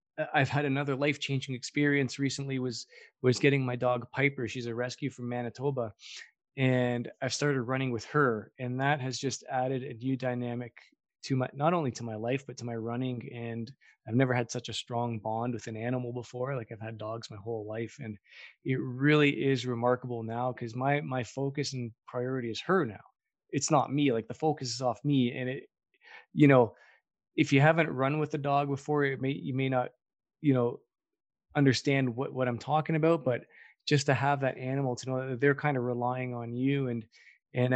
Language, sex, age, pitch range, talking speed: English, male, 20-39, 120-140 Hz, 205 wpm